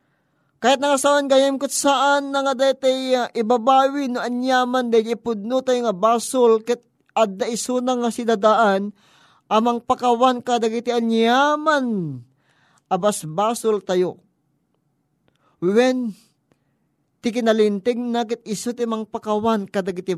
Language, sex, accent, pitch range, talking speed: Filipino, male, native, 165-250 Hz, 105 wpm